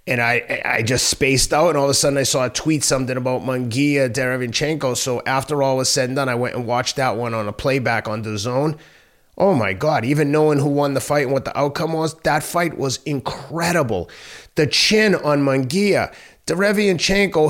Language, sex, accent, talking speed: English, male, American, 210 wpm